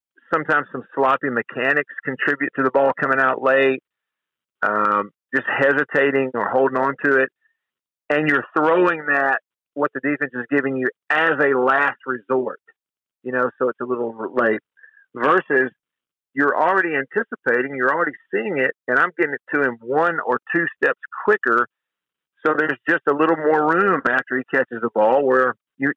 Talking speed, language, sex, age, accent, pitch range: 170 wpm, English, male, 50-69, American, 120-145 Hz